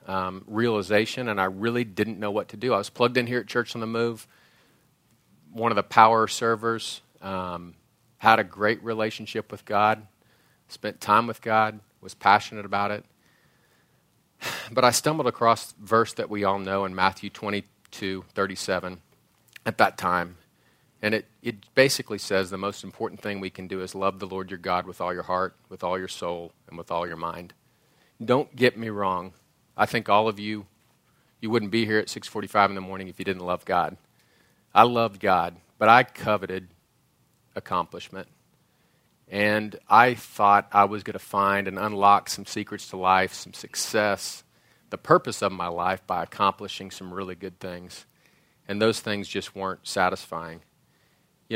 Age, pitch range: 40-59, 95-110 Hz